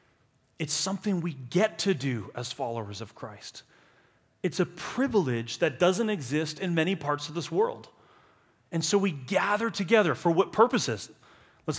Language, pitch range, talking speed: English, 145-205 Hz, 160 wpm